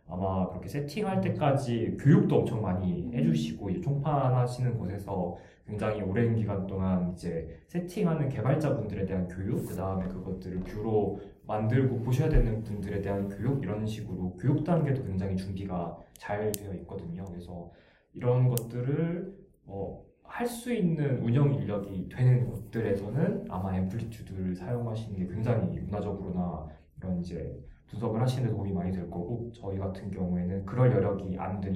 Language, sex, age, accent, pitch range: Korean, male, 20-39, native, 95-125 Hz